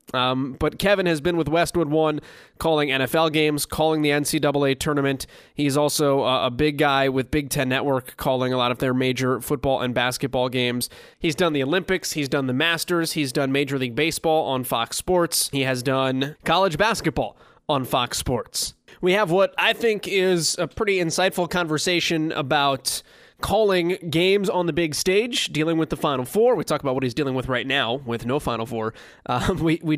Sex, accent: male, American